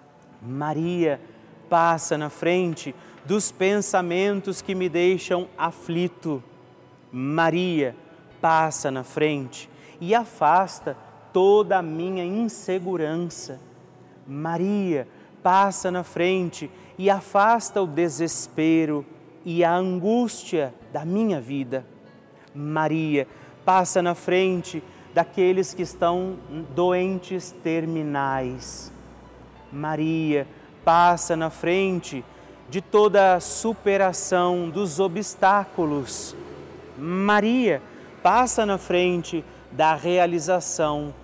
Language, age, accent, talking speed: Portuguese, 30-49, Brazilian, 85 wpm